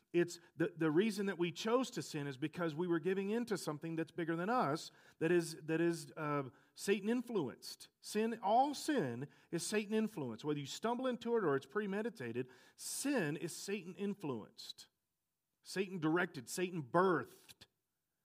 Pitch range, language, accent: 135-185 Hz, English, American